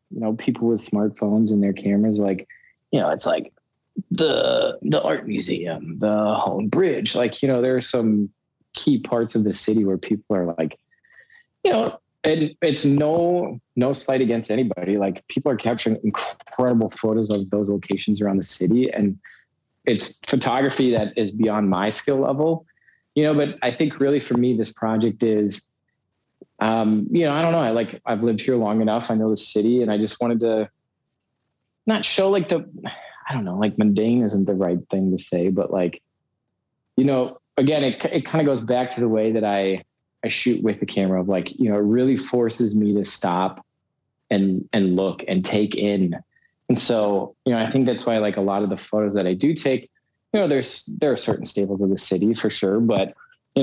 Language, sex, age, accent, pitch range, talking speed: English, male, 20-39, American, 105-130 Hz, 205 wpm